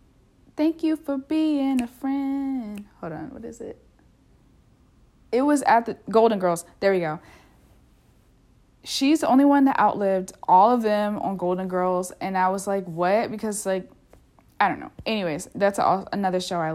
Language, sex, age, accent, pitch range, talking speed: English, female, 20-39, American, 185-235 Hz, 170 wpm